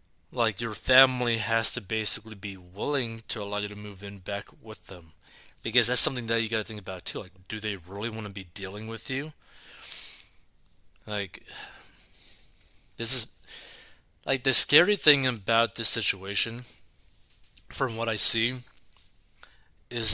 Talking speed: 155 wpm